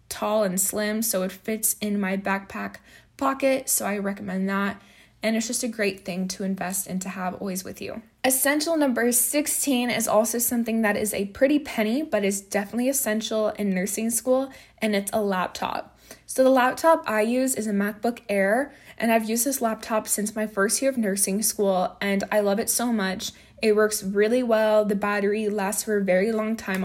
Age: 20-39